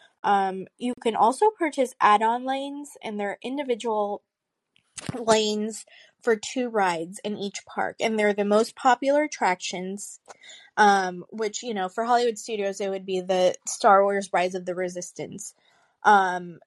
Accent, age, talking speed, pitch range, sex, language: American, 20-39, 150 wpm, 185-230 Hz, female, English